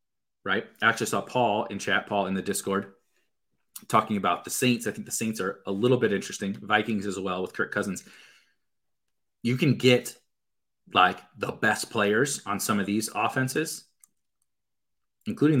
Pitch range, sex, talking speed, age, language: 100-120 Hz, male, 165 wpm, 30-49, English